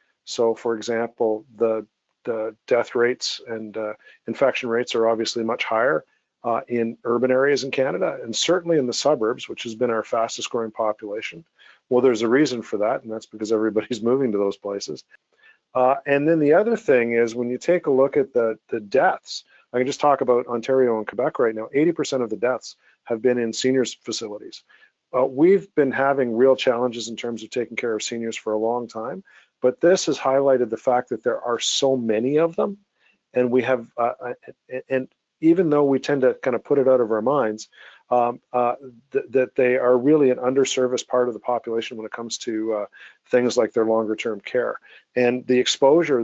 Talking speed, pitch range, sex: 200 wpm, 115-130 Hz, male